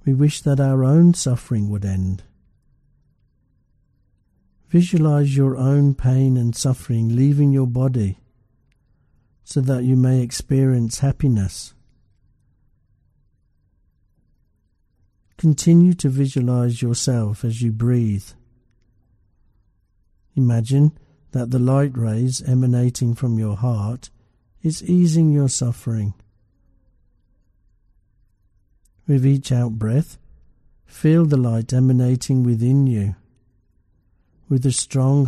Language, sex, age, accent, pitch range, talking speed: English, male, 60-79, British, 105-135 Hz, 95 wpm